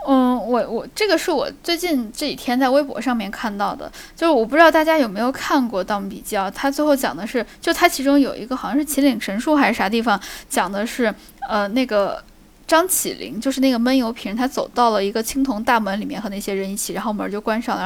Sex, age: female, 10-29